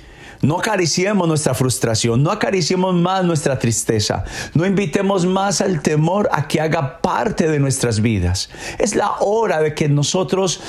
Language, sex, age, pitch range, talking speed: Spanish, male, 50-69, 135-180 Hz, 150 wpm